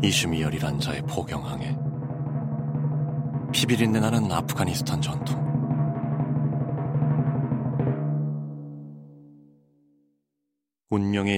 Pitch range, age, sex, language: 75-110 Hz, 40-59, male, Korean